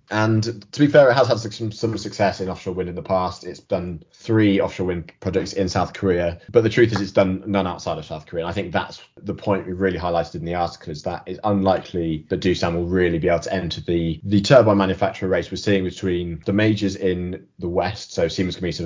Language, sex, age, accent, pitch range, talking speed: English, male, 20-39, British, 85-100 Hz, 240 wpm